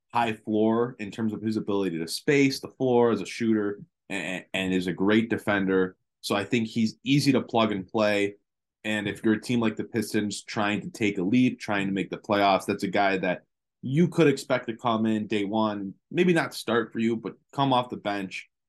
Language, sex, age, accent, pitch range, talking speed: English, male, 20-39, American, 100-120 Hz, 220 wpm